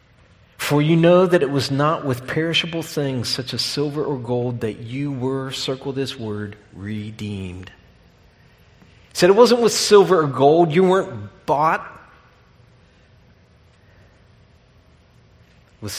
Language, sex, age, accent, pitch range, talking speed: English, male, 50-69, American, 105-145 Hz, 125 wpm